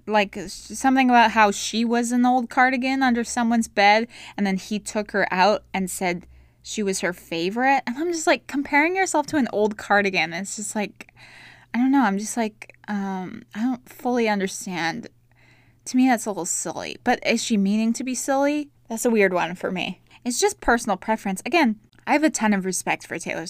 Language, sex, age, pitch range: English, female, 20-39, 185-245 Hz